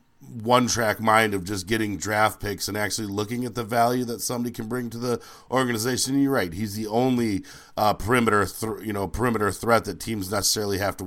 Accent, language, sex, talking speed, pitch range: American, English, male, 195 wpm, 105-125 Hz